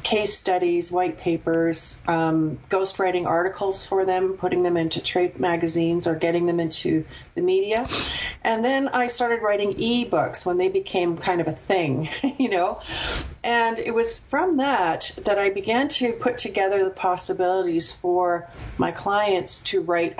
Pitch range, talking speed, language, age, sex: 170-215 Hz, 155 wpm, English, 40-59, female